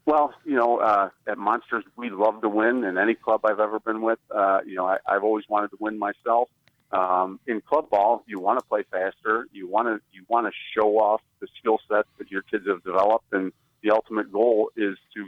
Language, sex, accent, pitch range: English, male, American, 100-115 Hz